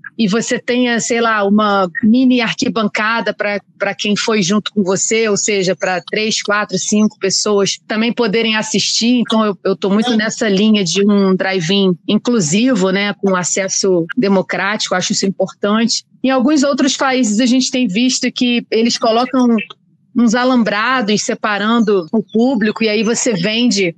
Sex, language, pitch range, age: female, Portuguese, 200-245 Hz, 30-49